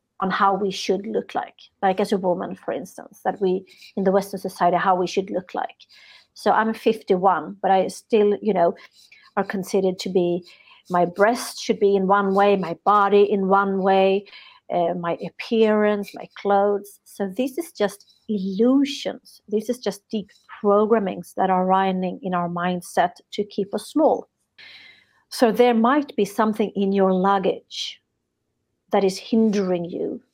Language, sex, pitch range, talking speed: English, female, 190-220 Hz, 165 wpm